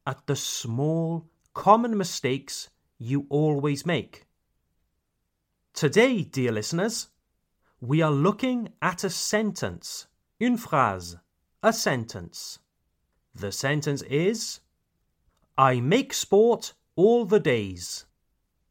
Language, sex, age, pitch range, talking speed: French, male, 30-49, 115-180 Hz, 95 wpm